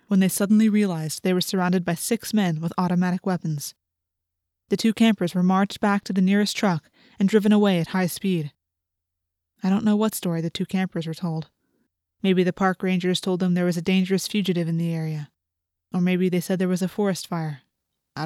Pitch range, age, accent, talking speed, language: 155-200 Hz, 20-39, American, 205 wpm, English